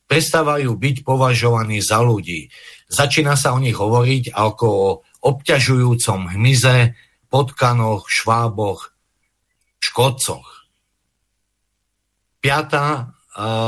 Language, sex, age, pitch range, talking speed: Slovak, male, 50-69, 110-130 Hz, 80 wpm